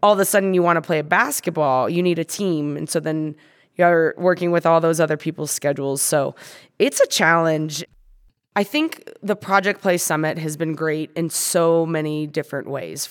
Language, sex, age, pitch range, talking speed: English, female, 20-39, 155-185 Hz, 195 wpm